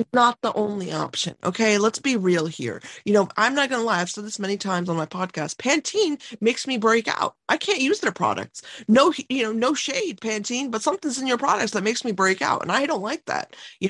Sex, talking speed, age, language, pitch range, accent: female, 240 wpm, 20-39, English, 165-220 Hz, American